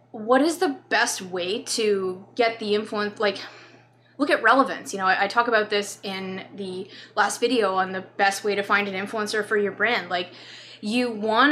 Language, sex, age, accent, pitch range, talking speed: English, female, 20-39, American, 195-240 Hz, 195 wpm